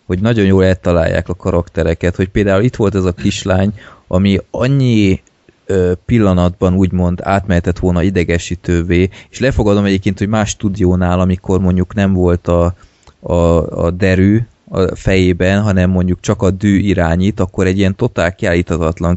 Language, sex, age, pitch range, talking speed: Hungarian, male, 30-49, 85-105 Hz, 145 wpm